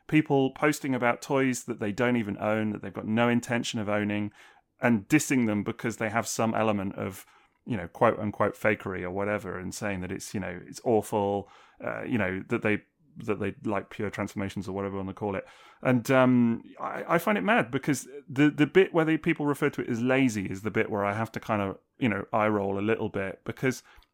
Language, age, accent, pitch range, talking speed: English, 30-49, British, 105-145 Hz, 230 wpm